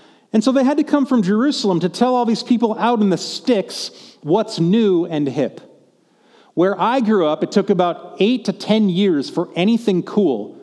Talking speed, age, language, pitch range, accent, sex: 200 wpm, 40-59, English, 165-215 Hz, American, male